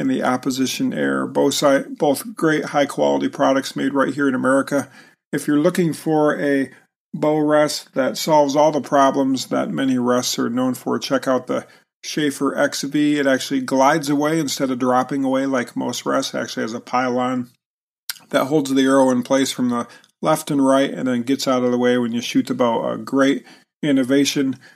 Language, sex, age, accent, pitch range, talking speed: English, male, 40-59, American, 130-155 Hz, 190 wpm